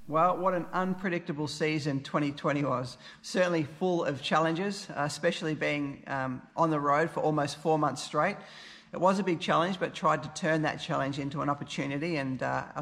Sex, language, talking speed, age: male, English, 180 wpm, 40-59